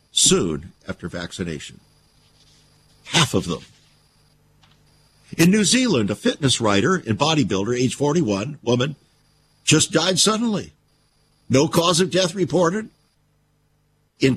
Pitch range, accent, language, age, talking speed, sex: 135-190 Hz, American, English, 60-79, 110 wpm, male